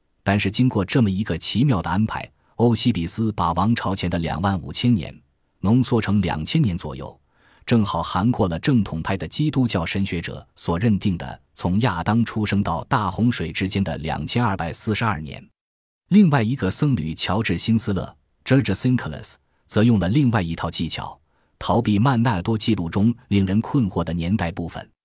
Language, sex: Chinese, male